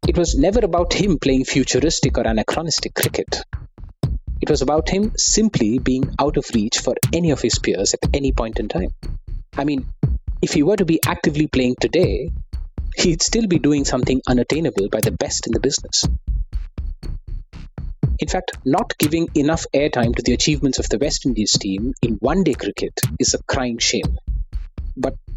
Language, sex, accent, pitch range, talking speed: English, male, Indian, 110-150 Hz, 175 wpm